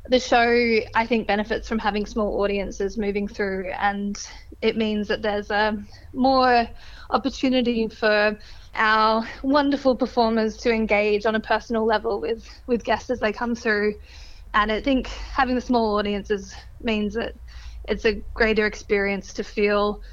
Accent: Australian